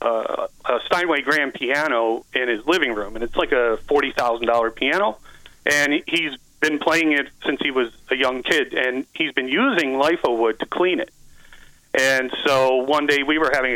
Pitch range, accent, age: 120-145 Hz, American, 40-59